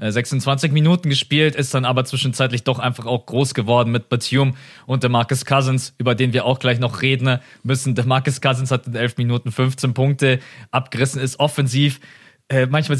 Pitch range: 130-160 Hz